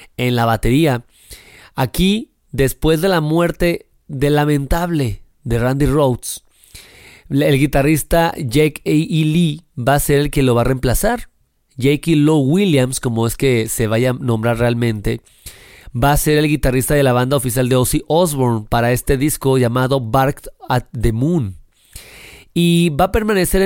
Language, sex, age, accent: Spanish, male, 30-49, Mexican